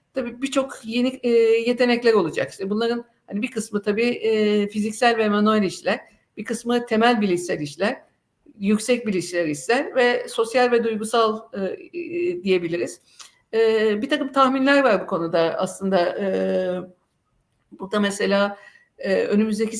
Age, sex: 50-69, female